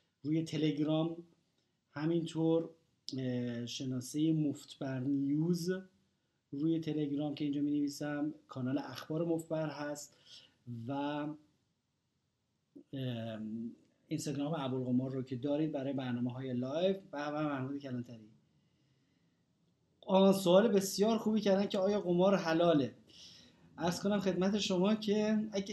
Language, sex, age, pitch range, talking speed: Persian, male, 30-49, 145-185 Hz, 100 wpm